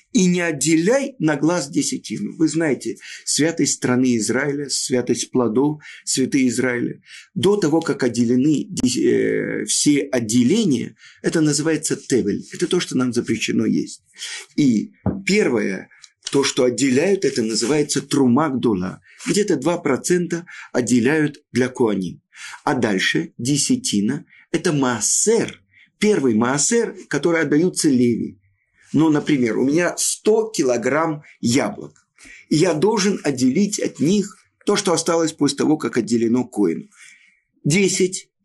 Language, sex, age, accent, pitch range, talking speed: Russian, male, 50-69, native, 135-205 Hz, 120 wpm